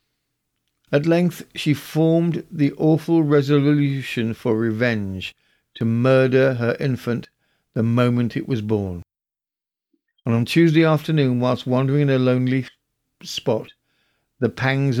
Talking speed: 120 wpm